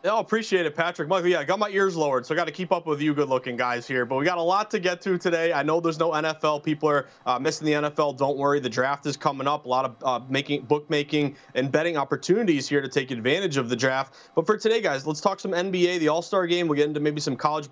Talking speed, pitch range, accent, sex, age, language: 280 wpm, 150-185 Hz, American, male, 30-49, English